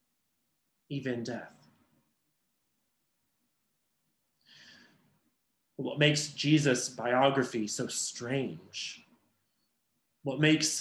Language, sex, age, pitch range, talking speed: English, male, 30-49, 130-160 Hz, 55 wpm